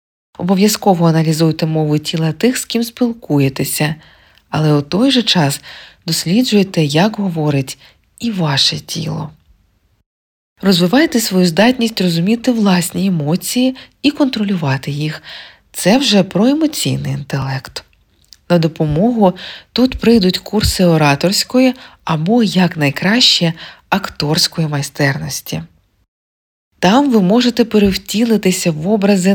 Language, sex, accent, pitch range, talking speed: Ukrainian, female, native, 155-215 Hz, 100 wpm